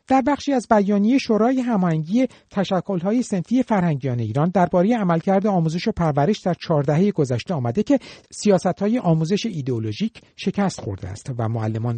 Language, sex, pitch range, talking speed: Persian, male, 135-205 Hz, 145 wpm